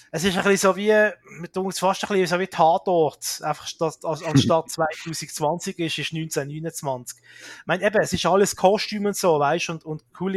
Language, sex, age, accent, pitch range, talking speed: German, male, 30-49, Austrian, 145-180 Hz, 185 wpm